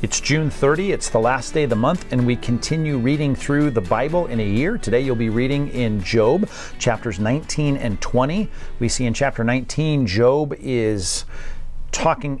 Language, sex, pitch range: English, male, 105-130 Hz